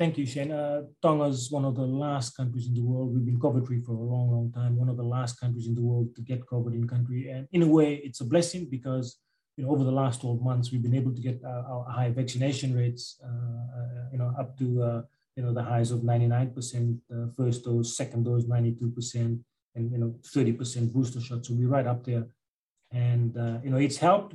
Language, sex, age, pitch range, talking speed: English, male, 30-49, 120-135 Hz, 230 wpm